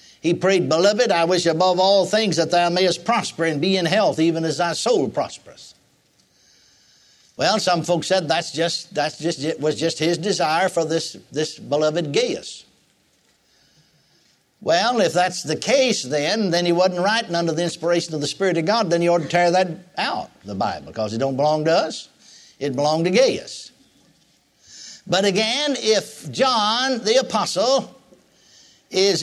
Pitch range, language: 170-220 Hz, English